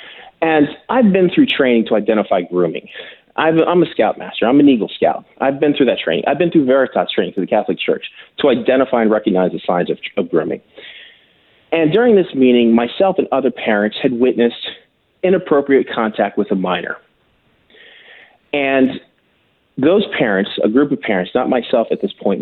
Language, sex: English, male